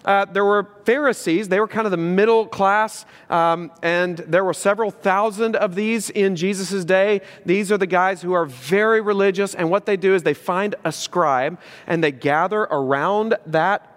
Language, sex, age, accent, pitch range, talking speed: English, male, 40-59, American, 160-210 Hz, 190 wpm